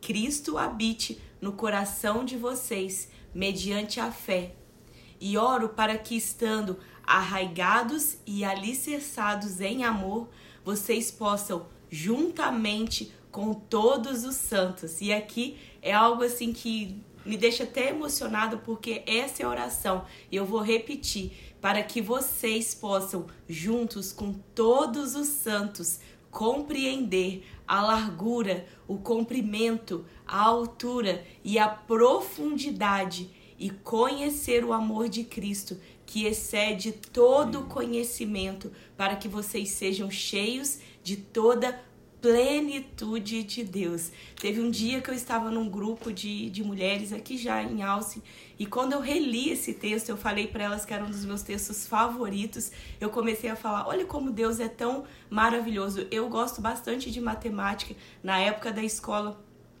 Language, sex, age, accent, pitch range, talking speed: Portuguese, female, 20-39, Brazilian, 200-235 Hz, 135 wpm